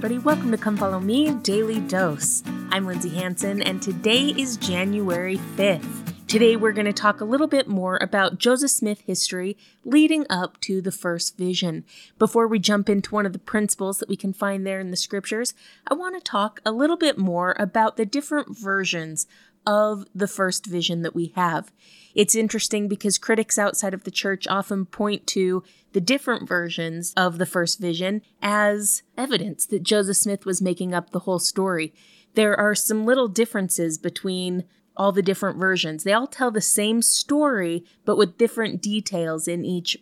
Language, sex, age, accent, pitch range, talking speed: English, female, 30-49, American, 180-220 Hz, 180 wpm